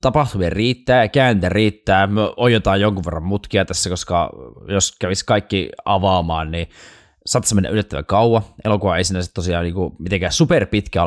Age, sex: 20-39, male